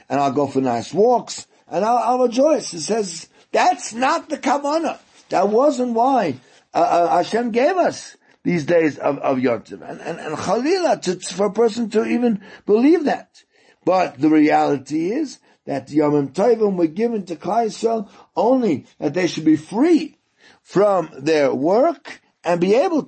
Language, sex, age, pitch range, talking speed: English, male, 60-79, 145-230 Hz, 170 wpm